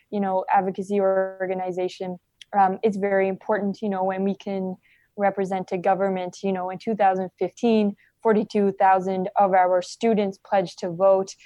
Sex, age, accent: female, 20-39, American